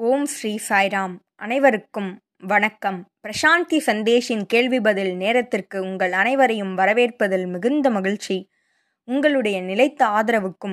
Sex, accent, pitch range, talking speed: female, native, 195-260 Hz, 100 wpm